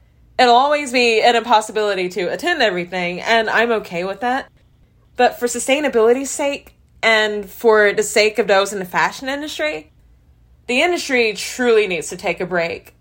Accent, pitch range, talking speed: American, 195-250 Hz, 160 wpm